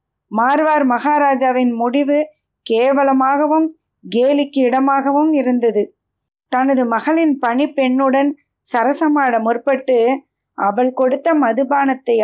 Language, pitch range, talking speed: Tamil, 235-285 Hz, 75 wpm